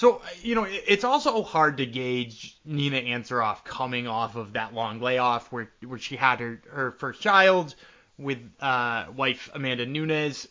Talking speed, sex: 165 wpm, male